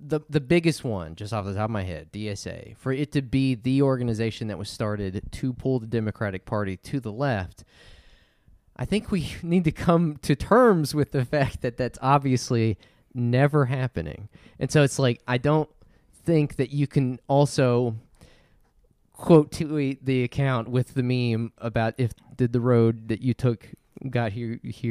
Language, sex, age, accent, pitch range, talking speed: English, male, 20-39, American, 110-145 Hz, 175 wpm